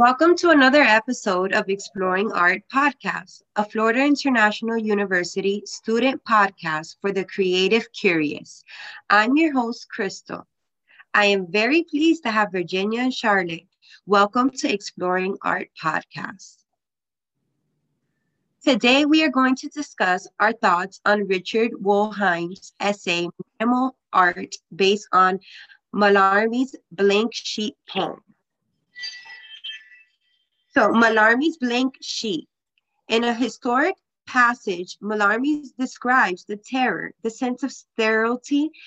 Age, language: 20-39, English